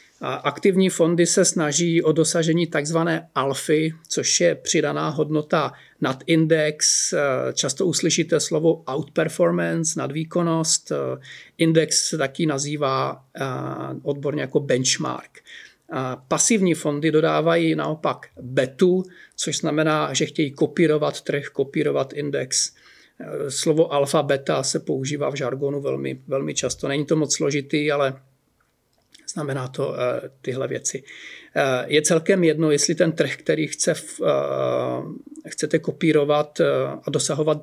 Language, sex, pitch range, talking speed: Czech, male, 145-165 Hz, 110 wpm